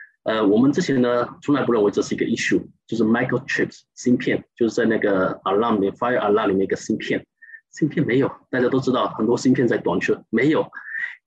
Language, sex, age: Chinese, male, 20-39